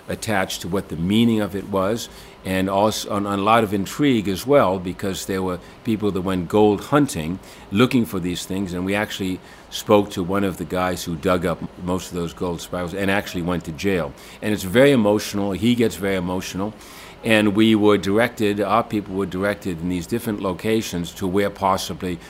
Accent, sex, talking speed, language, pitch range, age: American, male, 200 wpm, English, 90-110 Hz, 60-79